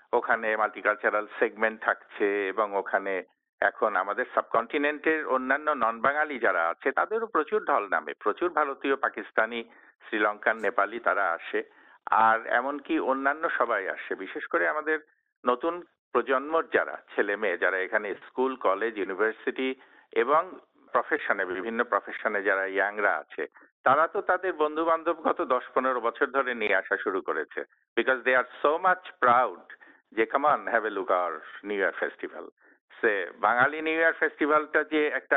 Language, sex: Bengali, male